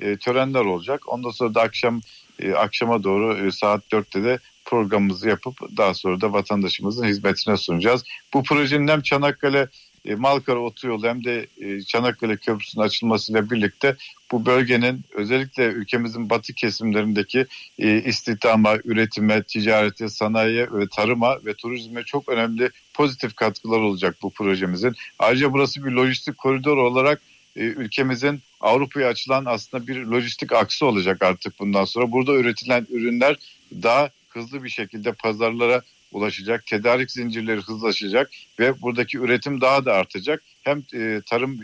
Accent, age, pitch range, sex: native, 50-69, 110-130 Hz, male